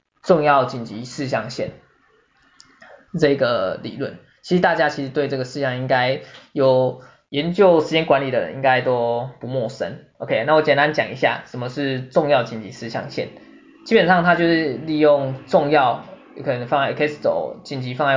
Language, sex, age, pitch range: Chinese, male, 20-39, 130-150 Hz